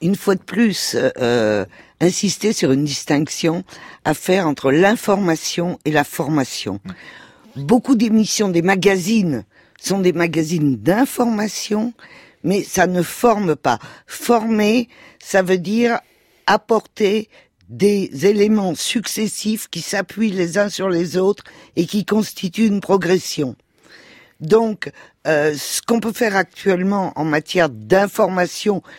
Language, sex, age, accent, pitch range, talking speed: French, female, 50-69, French, 155-210 Hz, 125 wpm